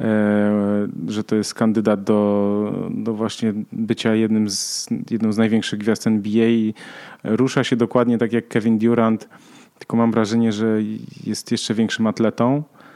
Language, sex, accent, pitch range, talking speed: Polish, male, native, 105-125 Hz, 135 wpm